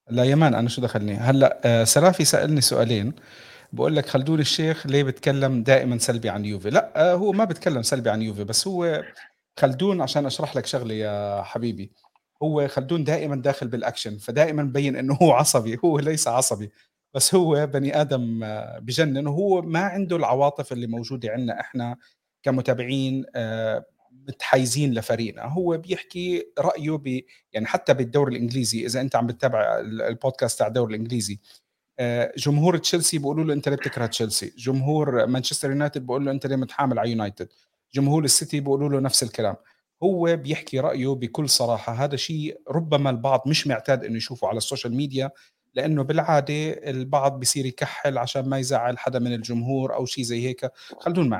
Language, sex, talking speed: Arabic, male, 165 wpm